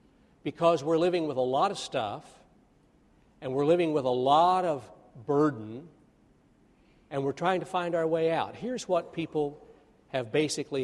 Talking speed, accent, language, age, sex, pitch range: 160 wpm, American, English, 50-69, male, 125-150 Hz